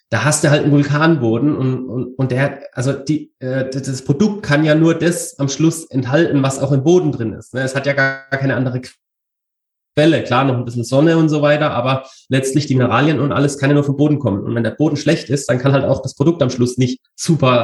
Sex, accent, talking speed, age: male, German, 240 wpm, 30-49